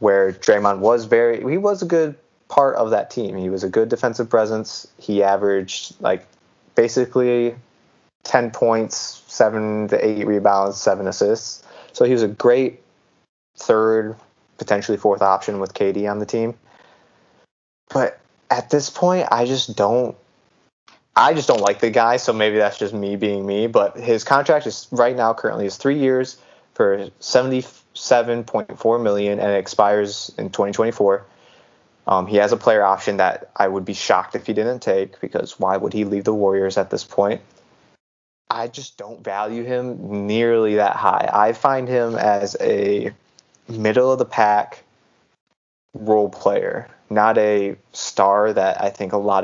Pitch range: 100-120 Hz